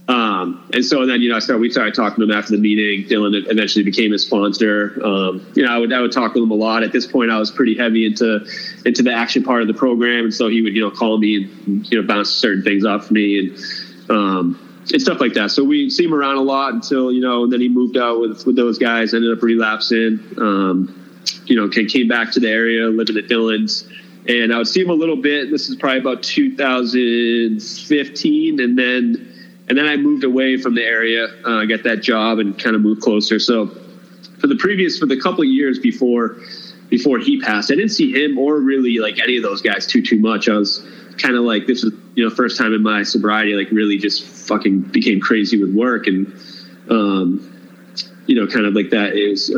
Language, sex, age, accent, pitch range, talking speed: English, male, 30-49, American, 105-125 Hz, 235 wpm